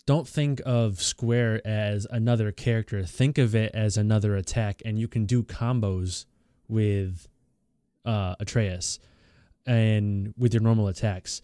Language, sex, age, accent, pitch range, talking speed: English, male, 20-39, American, 105-120 Hz, 135 wpm